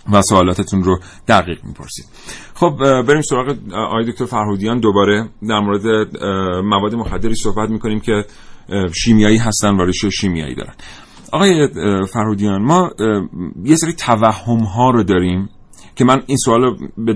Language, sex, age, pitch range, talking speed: Persian, male, 30-49, 100-125 Hz, 135 wpm